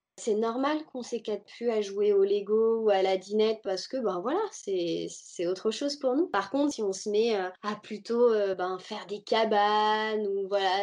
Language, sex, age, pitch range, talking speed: French, female, 20-39, 200-260 Hz, 210 wpm